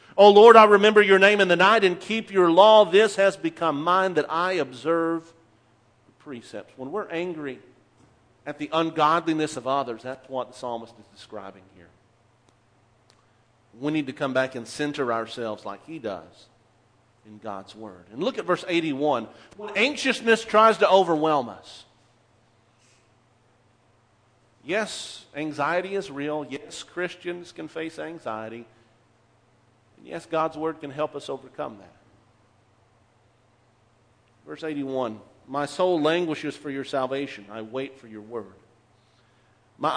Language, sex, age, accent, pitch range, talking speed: English, male, 50-69, American, 120-160 Hz, 145 wpm